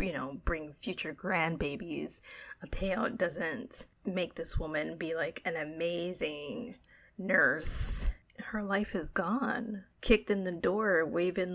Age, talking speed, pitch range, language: 30-49, 130 wpm, 165-200 Hz, English